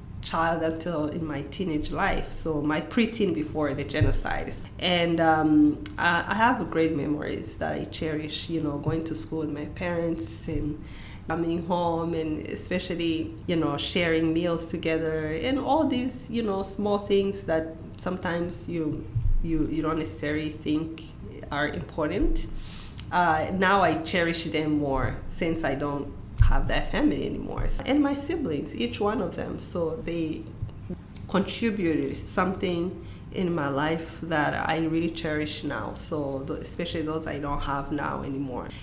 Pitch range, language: 145-170 Hz, English